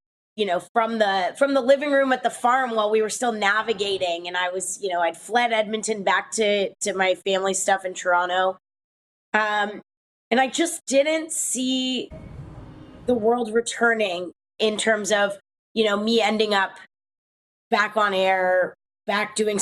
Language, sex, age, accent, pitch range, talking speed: English, female, 20-39, American, 185-225 Hz, 170 wpm